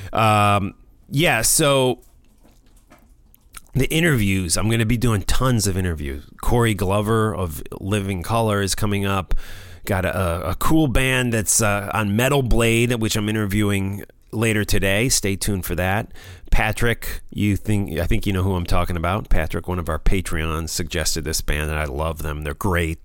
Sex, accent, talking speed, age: male, American, 170 wpm, 30-49